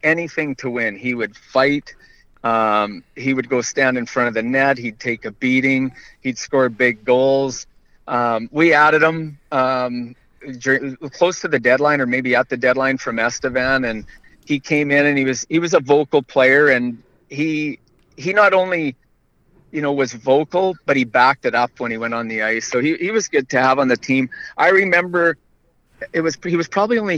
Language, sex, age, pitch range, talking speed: English, male, 40-59, 120-145 Hz, 200 wpm